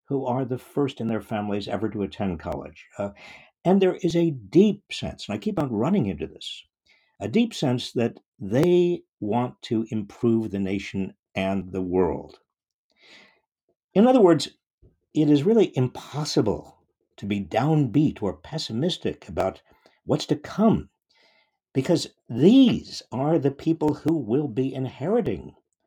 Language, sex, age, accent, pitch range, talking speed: English, male, 60-79, American, 110-165 Hz, 145 wpm